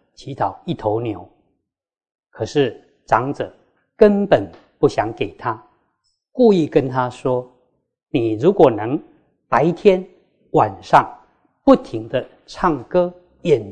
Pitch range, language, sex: 125-175 Hz, Chinese, male